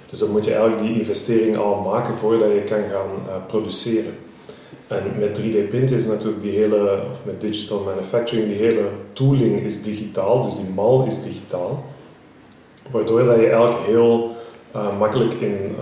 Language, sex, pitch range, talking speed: Dutch, male, 100-115 Hz, 170 wpm